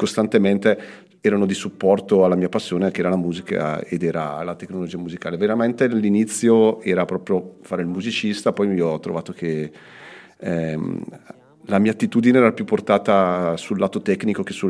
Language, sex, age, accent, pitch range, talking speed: Italian, male, 40-59, native, 85-100 Hz, 165 wpm